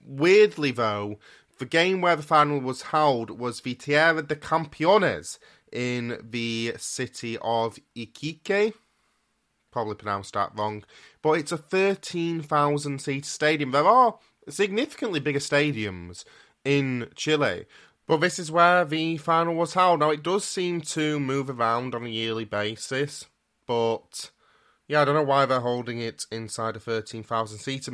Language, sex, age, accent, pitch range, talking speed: English, male, 20-39, British, 115-155 Hz, 145 wpm